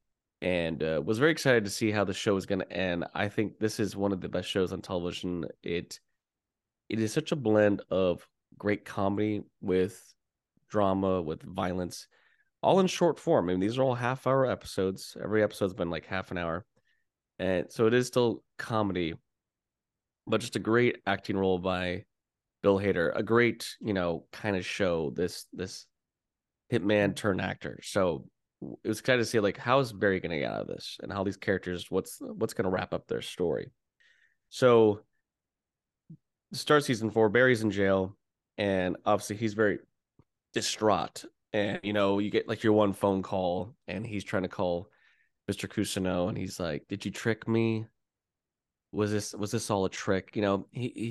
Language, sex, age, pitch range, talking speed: English, male, 20-39, 95-115 Hz, 180 wpm